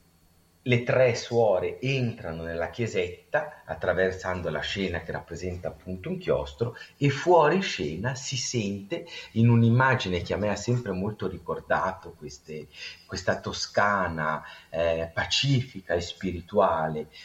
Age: 40-59